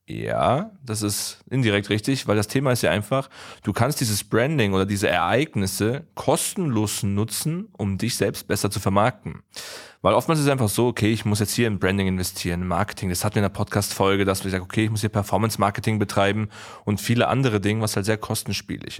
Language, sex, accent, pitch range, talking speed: German, male, German, 100-120 Hz, 200 wpm